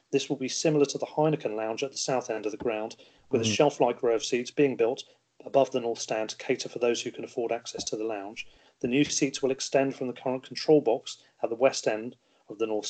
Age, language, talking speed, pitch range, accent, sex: 30-49, English, 255 wpm, 115-140 Hz, British, male